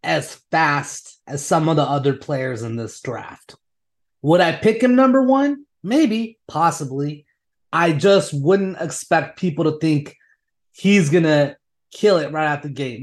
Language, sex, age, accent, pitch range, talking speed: English, male, 30-49, American, 140-195 Hz, 155 wpm